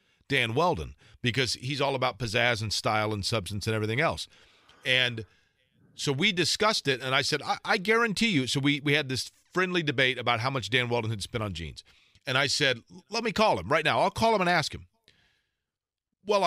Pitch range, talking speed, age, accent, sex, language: 120-155 Hz, 210 wpm, 40-59, American, male, English